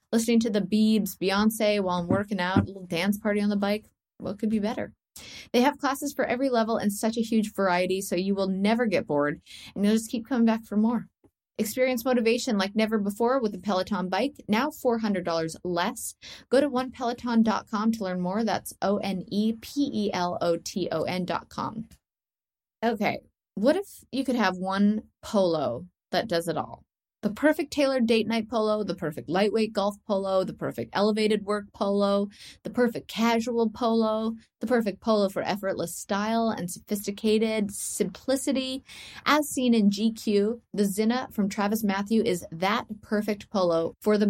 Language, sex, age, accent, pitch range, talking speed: English, female, 20-39, American, 190-230 Hz, 165 wpm